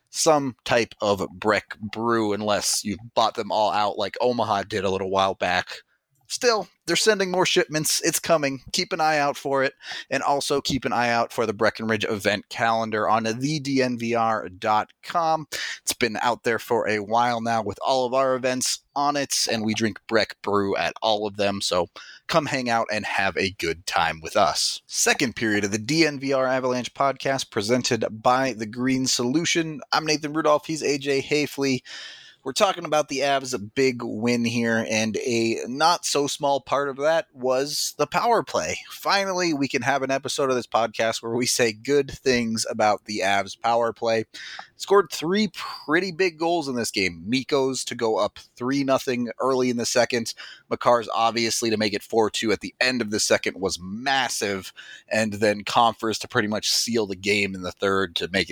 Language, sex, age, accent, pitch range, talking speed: English, male, 30-49, American, 110-140 Hz, 185 wpm